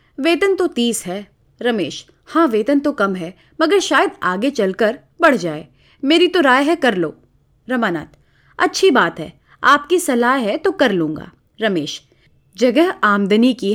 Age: 30-49